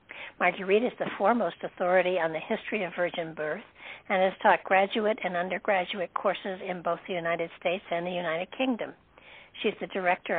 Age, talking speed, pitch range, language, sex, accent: 60-79, 175 wpm, 180-210 Hz, English, female, American